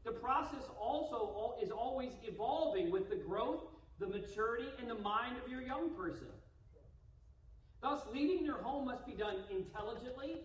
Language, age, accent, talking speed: English, 40-59, American, 150 wpm